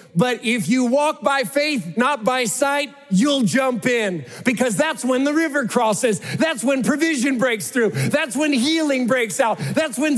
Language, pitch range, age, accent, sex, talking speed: English, 185-265 Hz, 40-59, American, male, 175 wpm